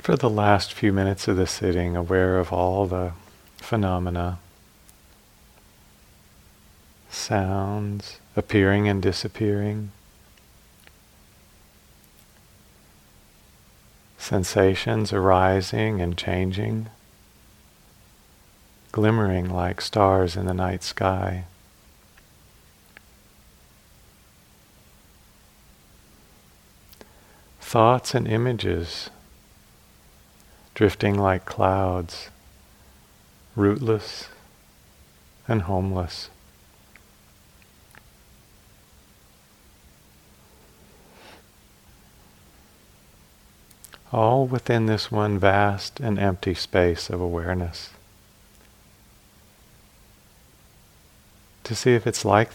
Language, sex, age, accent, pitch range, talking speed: English, male, 40-59, American, 90-105 Hz, 60 wpm